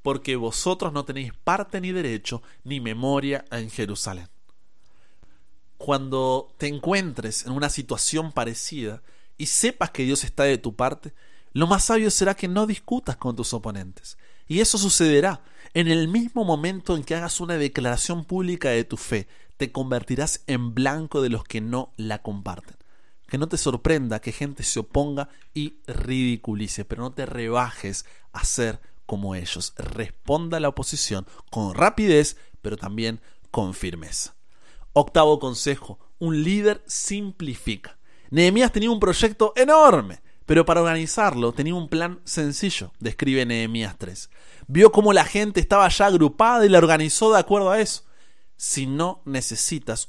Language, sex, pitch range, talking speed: Spanish, male, 120-190 Hz, 150 wpm